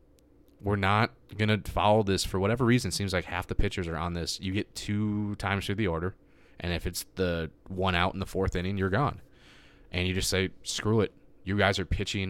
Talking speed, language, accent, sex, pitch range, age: 230 wpm, English, American, male, 85-100 Hz, 20-39